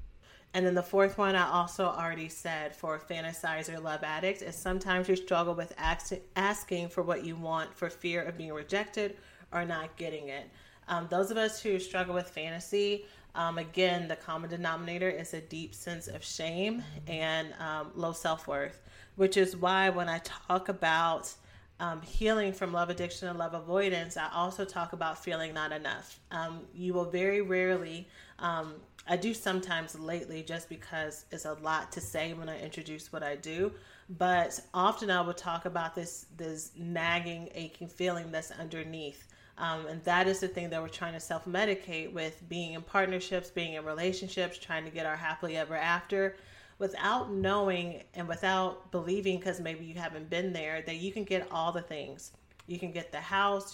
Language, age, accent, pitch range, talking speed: English, 30-49, American, 160-185 Hz, 180 wpm